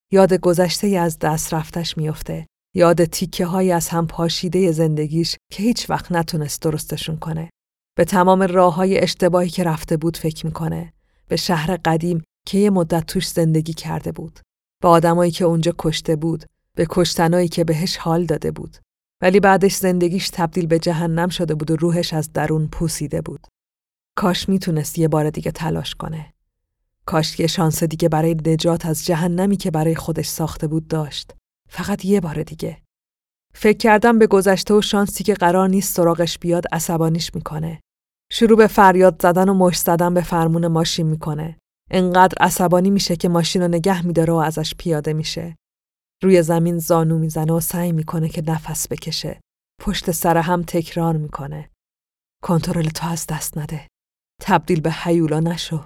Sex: female